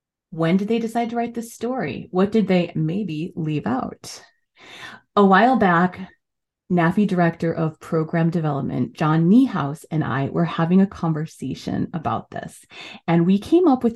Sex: female